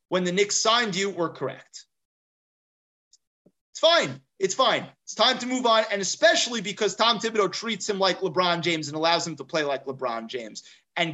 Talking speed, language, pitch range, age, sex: 190 wpm, English, 160-210 Hz, 30-49, male